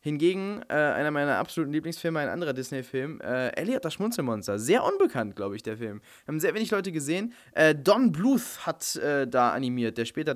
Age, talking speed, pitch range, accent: 20-39, 185 wpm, 120-165 Hz, German